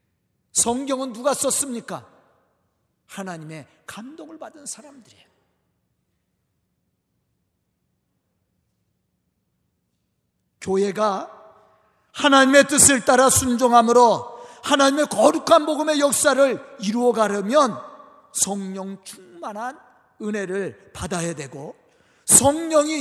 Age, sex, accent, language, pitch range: 40-59, male, native, Korean, 215-315 Hz